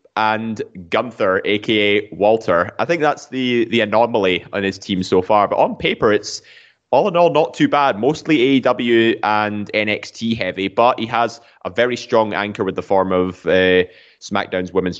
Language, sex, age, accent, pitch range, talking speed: English, male, 20-39, British, 100-120 Hz, 175 wpm